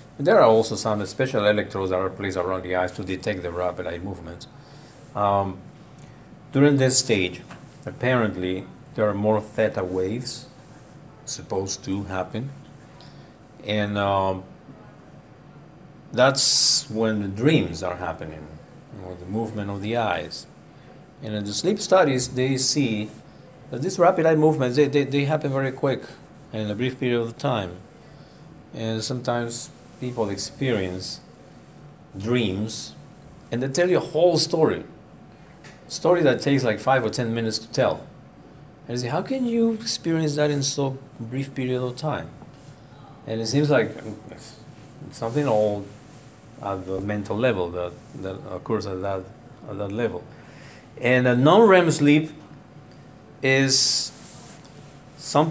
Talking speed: 145 wpm